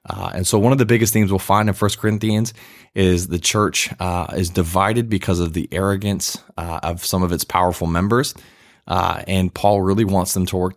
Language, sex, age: English, male, 20-39